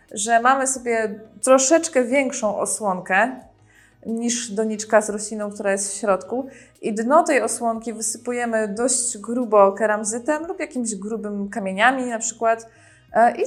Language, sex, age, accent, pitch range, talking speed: Polish, female, 20-39, native, 205-255 Hz, 130 wpm